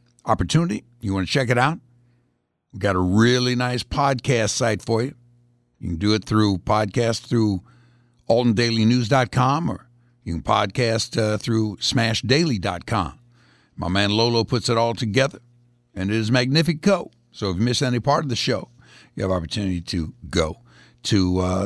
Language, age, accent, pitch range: English, 60-79, American, 95-125 Hz